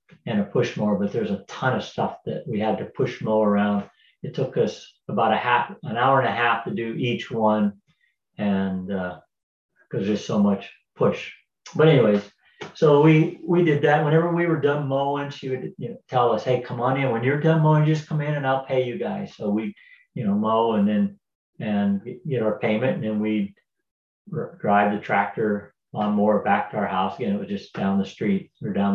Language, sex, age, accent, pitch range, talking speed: English, male, 50-69, American, 100-150 Hz, 210 wpm